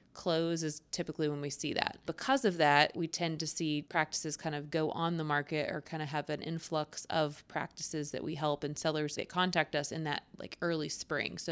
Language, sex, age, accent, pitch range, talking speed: English, female, 20-39, American, 155-180 Hz, 225 wpm